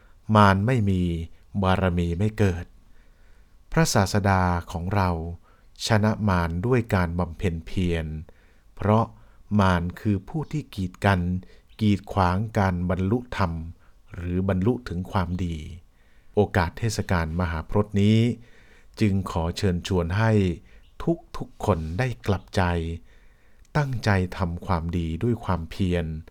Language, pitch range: English, 90-105 Hz